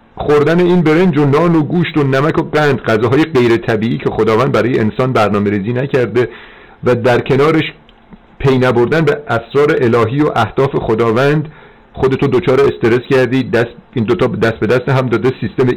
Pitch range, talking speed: 105-135 Hz, 175 wpm